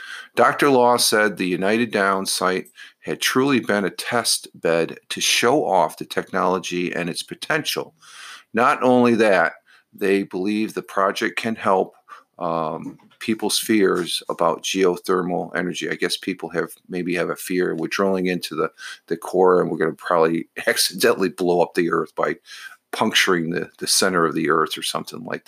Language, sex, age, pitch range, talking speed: English, male, 50-69, 90-115 Hz, 165 wpm